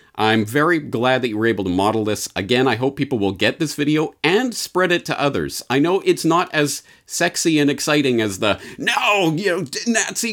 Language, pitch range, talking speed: English, 95-130 Hz, 215 wpm